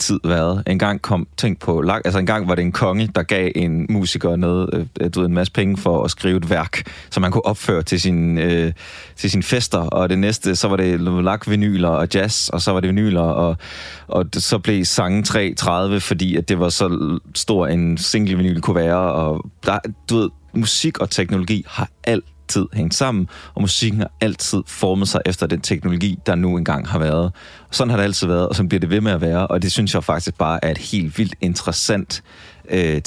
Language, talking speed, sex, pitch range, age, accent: Danish, 220 wpm, male, 85-100 Hz, 30-49, native